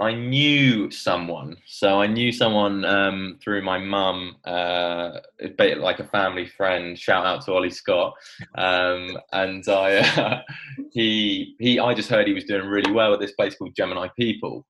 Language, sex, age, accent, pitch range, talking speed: English, male, 20-39, British, 90-105 Hz, 175 wpm